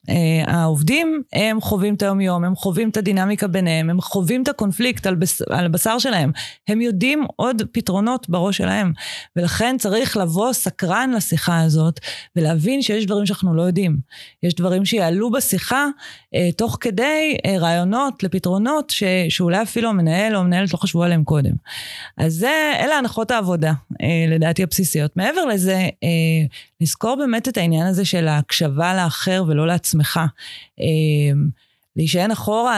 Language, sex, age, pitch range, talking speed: Hebrew, female, 30-49, 170-225 Hz, 150 wpm